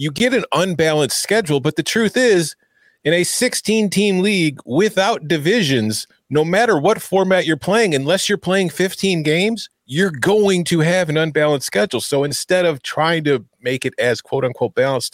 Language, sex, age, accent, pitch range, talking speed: English, male, 40-59, American, 115-190 Hz, 170 wpm